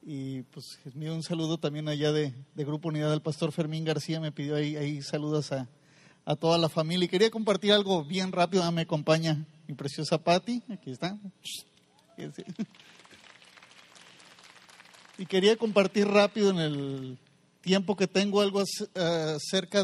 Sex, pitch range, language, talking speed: male, 150-190 Hz, Spanish, 150 wpm